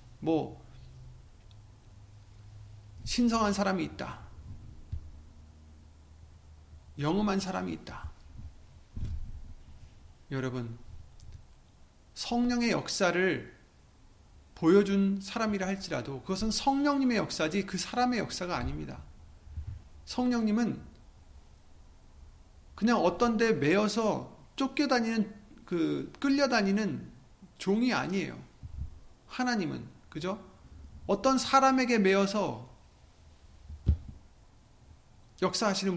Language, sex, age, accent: Korean, male, 40-59, native